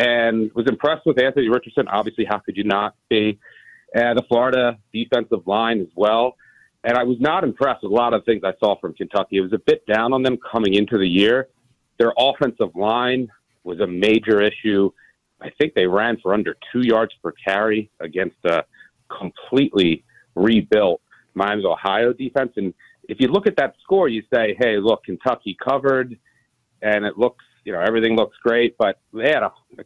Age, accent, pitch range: 40-59, American, 105-125 Hz